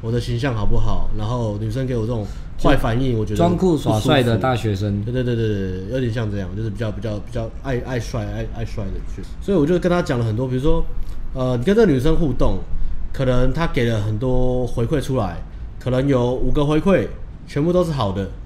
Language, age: Chinese, 30-49